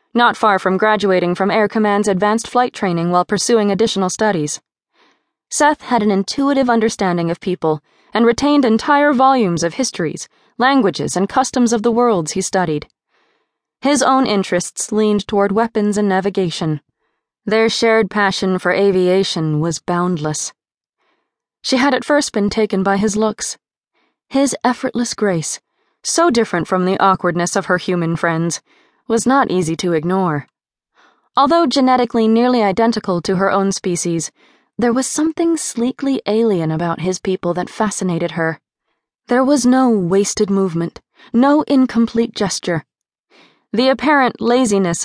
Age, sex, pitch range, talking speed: 20-39, female, 180-240 Hz, 140 wpm